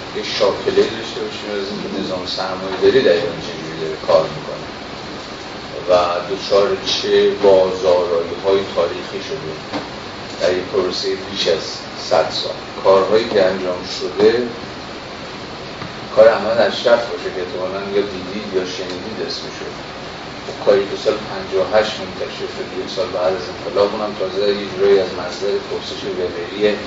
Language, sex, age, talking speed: Persian, male, 40-59, 125 wpm